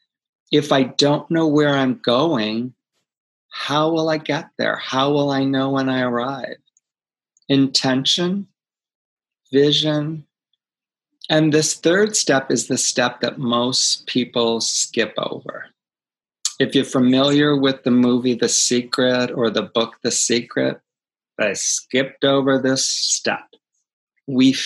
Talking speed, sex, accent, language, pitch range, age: 125 wpm, male, American, English, 125-150 Hz, 40-59